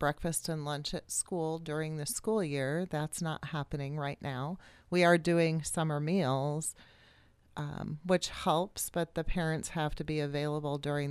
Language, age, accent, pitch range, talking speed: English, 40-59, American, 135-165 Hz, 160 wpm